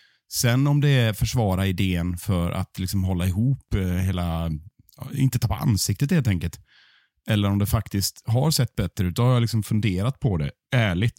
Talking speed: 170 wpm